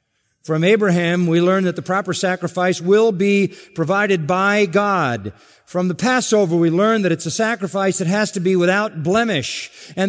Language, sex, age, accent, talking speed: English, male, 50-69, American, 170 wpm